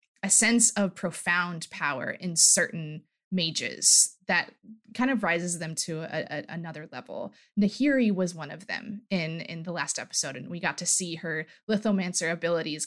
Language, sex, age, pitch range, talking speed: English, female, 20-39, 165-215 Hz, 160 wpm